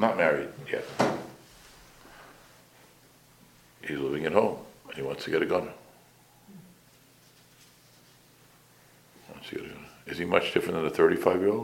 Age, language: 60-79, English